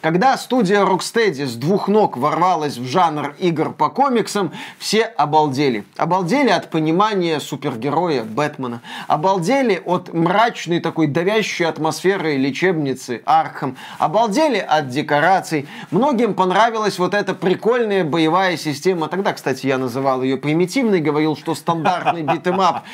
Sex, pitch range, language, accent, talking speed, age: male, 150-195 Hz, Russian, native, 125 wpm, 20-39